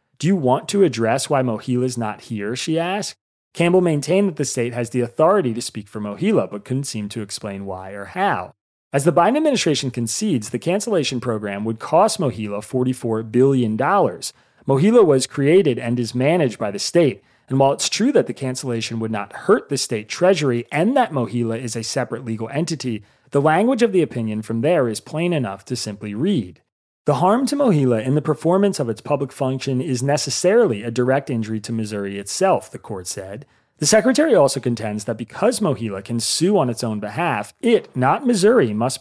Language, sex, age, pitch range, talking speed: English, male, 30-49, 110-155 Hz, 195 wpm